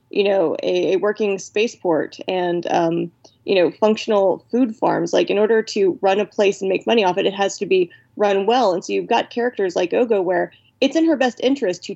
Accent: American